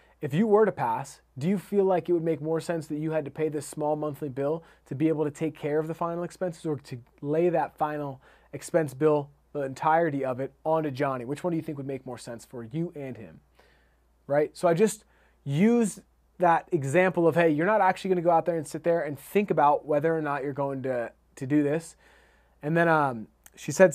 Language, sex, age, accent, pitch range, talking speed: English, male, 20-39, American, 150-175 Hz, 240 wpm